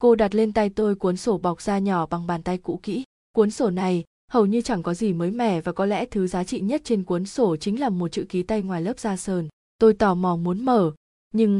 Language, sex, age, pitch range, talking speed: Vietnamese, female, 20-39, 185-225 Hz, 265 wpm